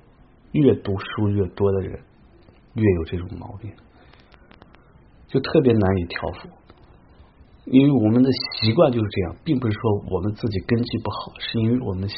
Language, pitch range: English, 95-115 Hz